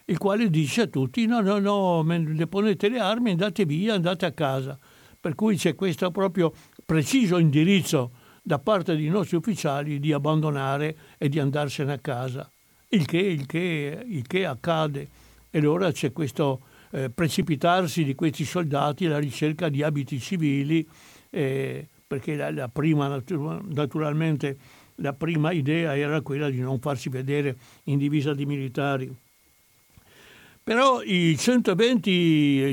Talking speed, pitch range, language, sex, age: 145 wpm, 145-185 Hz, Italian, male, 60-79